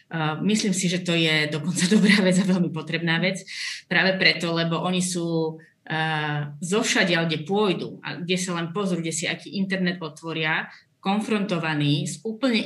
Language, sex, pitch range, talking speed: Slovak, female, 160-185 Hz, 160 wpm